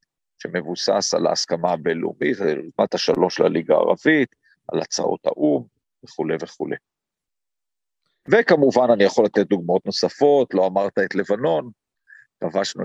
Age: 40-59